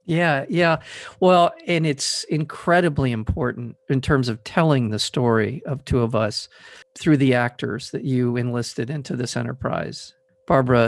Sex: male